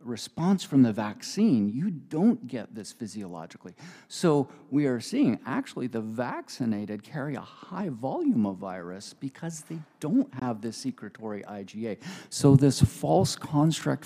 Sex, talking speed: male, 140 wpm